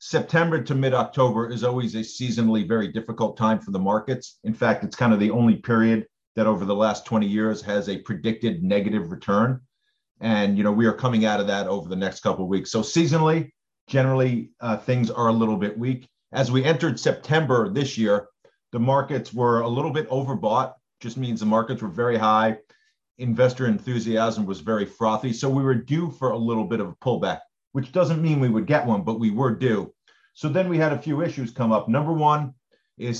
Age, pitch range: 40-59, 105-130 Hz